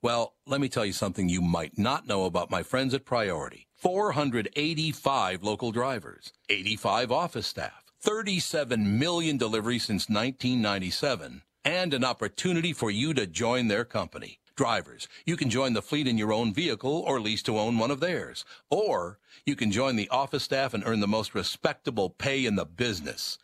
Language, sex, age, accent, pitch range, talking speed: English, male, 60-79, American, 105-145 Hz, 175 wpm